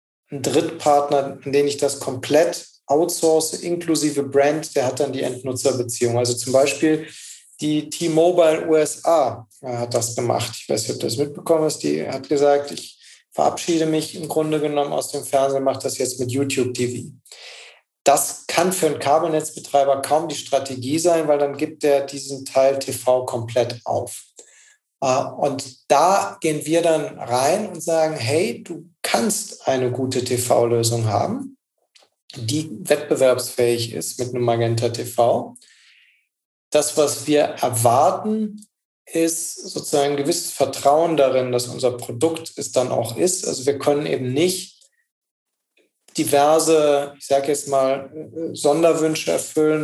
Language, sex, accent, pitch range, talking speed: German, male, German, 130-160 Hz, 145 wpm